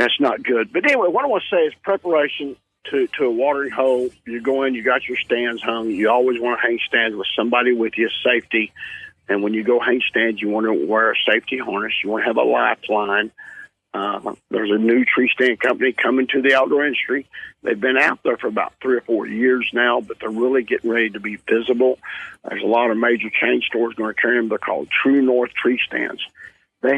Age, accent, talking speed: 50-69, American, 230 wpm